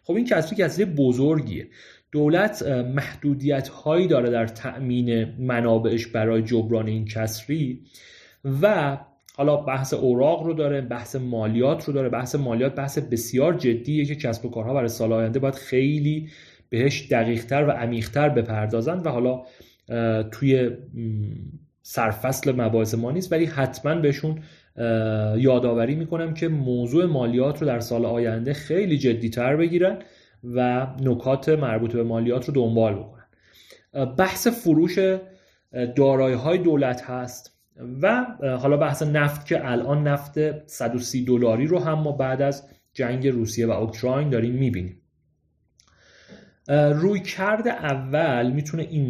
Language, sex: Persian, male